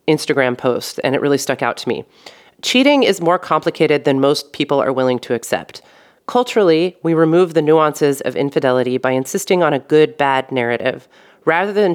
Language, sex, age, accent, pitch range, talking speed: English, female, 30-49, American, 130-170 Hz, 180 wpm